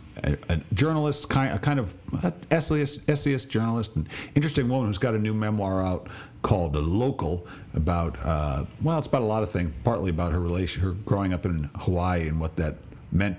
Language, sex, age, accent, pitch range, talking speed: English, male, 50-69, American, 85-115 Hz, 195 wpm